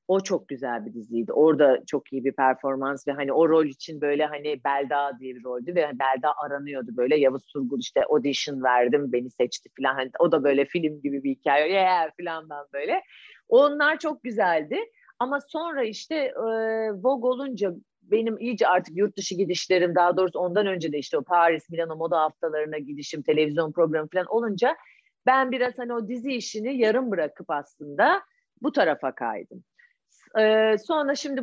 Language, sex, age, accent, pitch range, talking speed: Turkish, female, 40-59, native, 150-235 Hz, 175 wpm